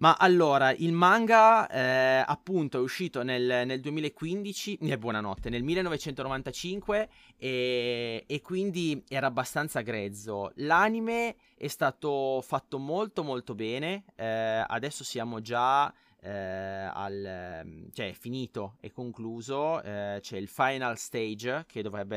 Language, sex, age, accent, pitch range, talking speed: Italian, male, 30-49, native, 115-145 Hz, 125 wpm